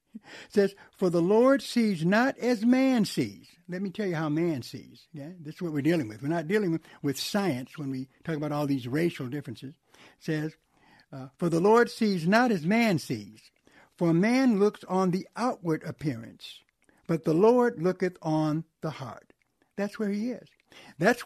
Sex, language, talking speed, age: male, English, 190 wpm, 60-79